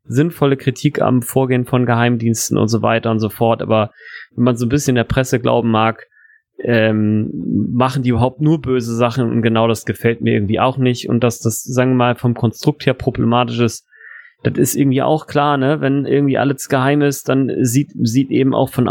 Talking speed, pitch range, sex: 205 wpm, 120-140 Hz, male